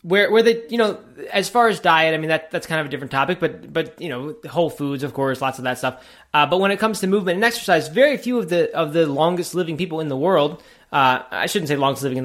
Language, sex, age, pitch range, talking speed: English, male, 20-39, 135-180 Hz, 285 wpm